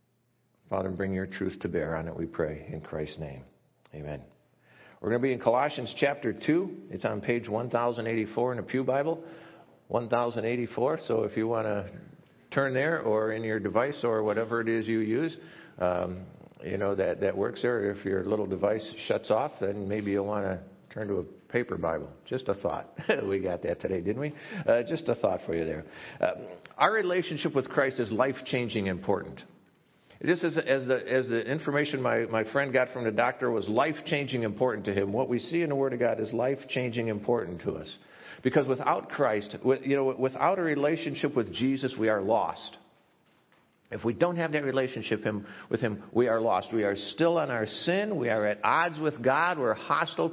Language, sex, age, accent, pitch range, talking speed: English, male, 50-69, American, 105-140 Hz, 200 wpm